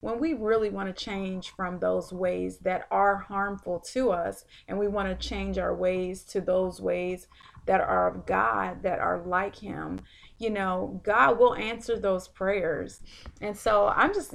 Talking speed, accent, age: 180 wpm, American, 30-49